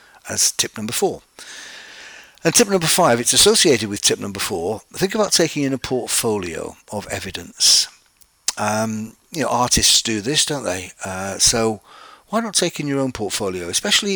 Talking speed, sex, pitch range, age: 170 wpm, male, 105-140 Hz, 50-69